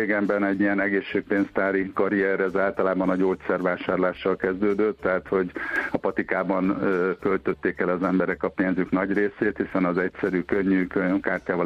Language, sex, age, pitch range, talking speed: Hungarian, male, 50-69, 90-100 Hz, 135 wpm